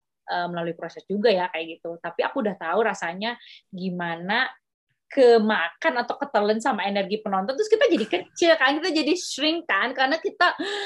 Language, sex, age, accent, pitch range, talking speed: Indonesian, female, 20-39, native, 175-260 Hz, 160 wpm